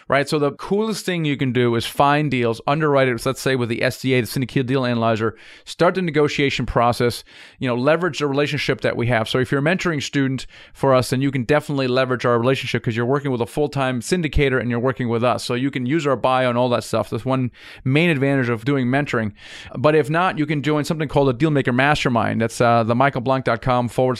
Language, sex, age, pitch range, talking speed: English, male, 30-49, 120-145 Hz, 235 wpm